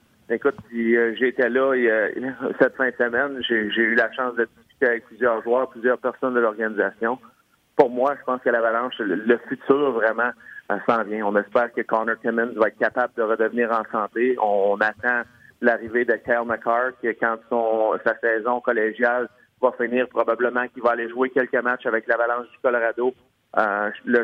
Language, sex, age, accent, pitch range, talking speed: French, male, 30-49, Canadian, 115-135 Hz, 175 wpm